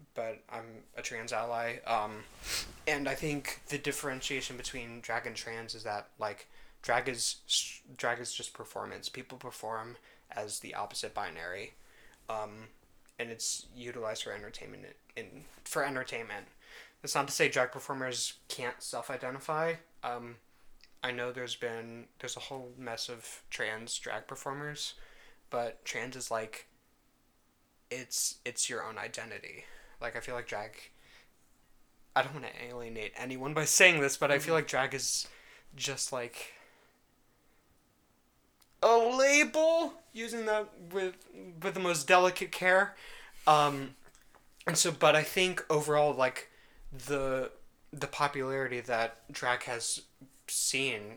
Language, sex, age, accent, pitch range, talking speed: English, male, 20-39, American, 115-145 Hz, 135 wpm